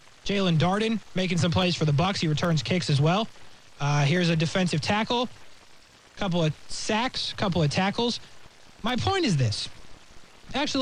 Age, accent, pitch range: 20-39, American, 140-220 Hz